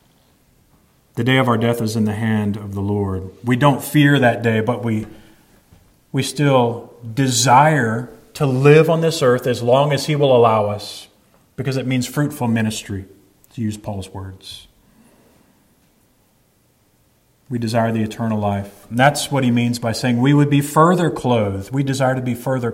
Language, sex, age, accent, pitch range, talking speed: English, male, 40-59, American, 110-135 Hz, 170 wpm